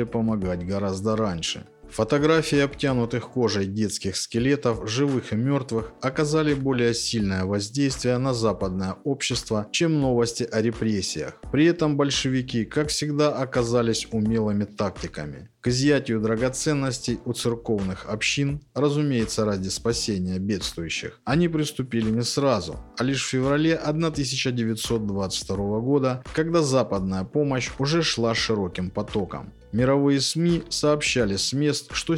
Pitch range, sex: 105-140 Hz, male